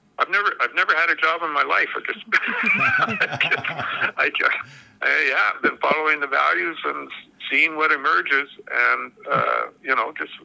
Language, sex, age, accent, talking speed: English, male, 60-79, American, 185 wpm